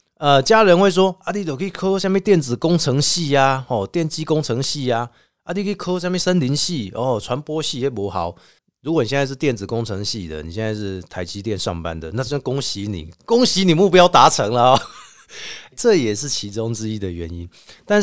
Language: Chinese